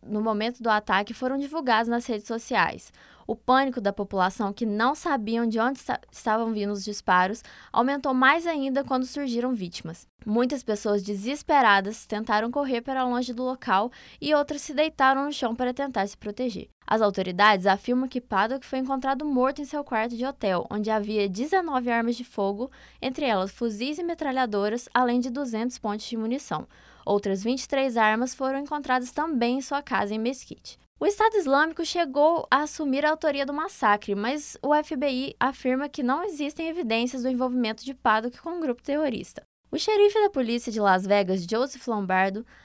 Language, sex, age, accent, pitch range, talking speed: Portuguese, female, 20-39, Brazilian, 215-275 Hz, 175 wpm